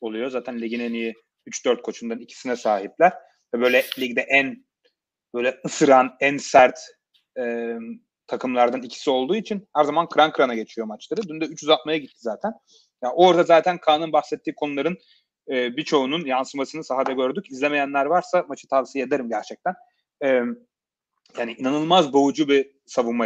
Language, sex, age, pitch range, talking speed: Turkish, male, 30-49, 125-160 Hz, 145 wpm